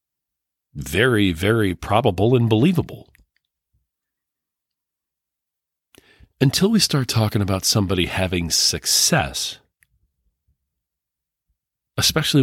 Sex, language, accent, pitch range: male, English, American, 80-105 Hz